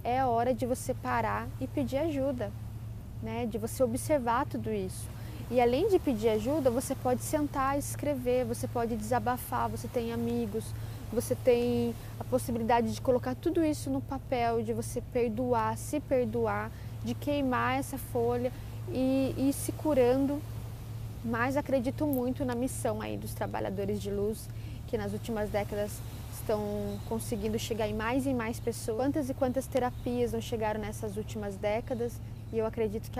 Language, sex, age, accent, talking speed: Portuguese, female, 10-29, Brazilian, 160 wpm